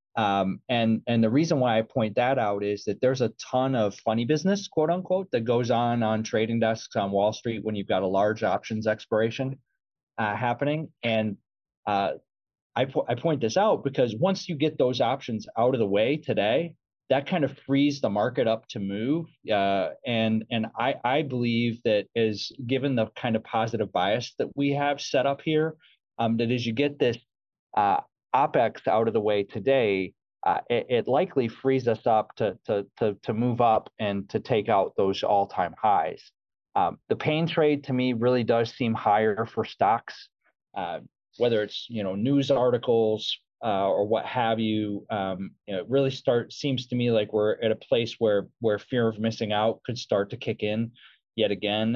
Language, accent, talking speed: English, American, 195 wpm